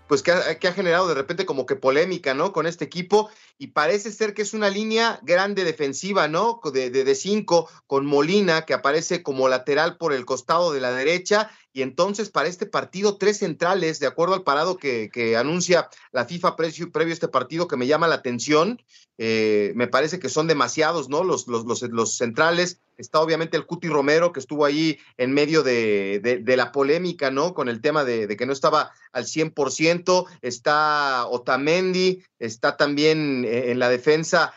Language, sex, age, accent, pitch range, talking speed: Spanish, male, 40-59, Mexican, 130-170 Hz, 195 wpm